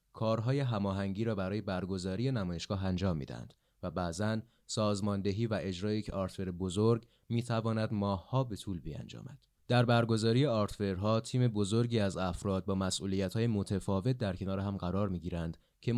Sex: male